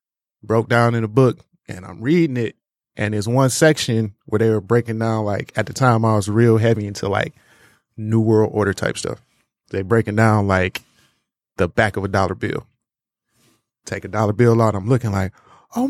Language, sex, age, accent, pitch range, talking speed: English, male, 20-39, American, 105-120 Hz, 200 wpm